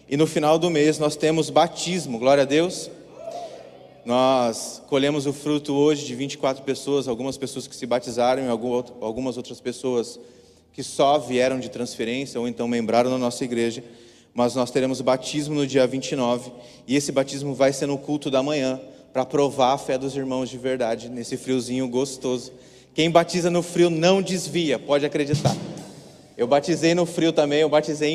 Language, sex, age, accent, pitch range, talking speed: Portuguese, male, 30-49, Brazilian, 125-150 Hz, 175 wpm